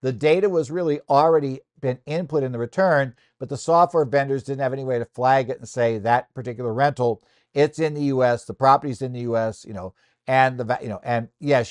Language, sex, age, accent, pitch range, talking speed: English, male, 60-79, American, 115-145 Hz, 230 wpm